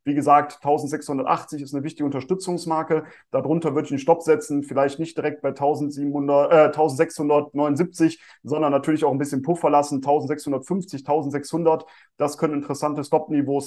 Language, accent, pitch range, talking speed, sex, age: German, German, 145-165 Hz, 145 wpm, male, 30-49